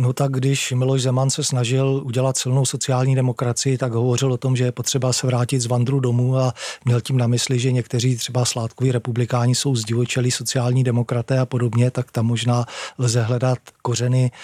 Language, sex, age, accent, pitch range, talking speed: Czech, male, 40-59, native, 120-130 Hz, 185 wpm